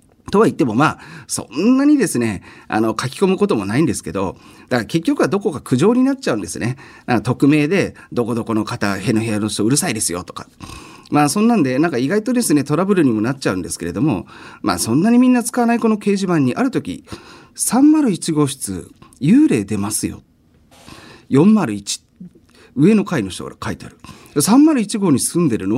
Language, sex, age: Japanese, male, 40-59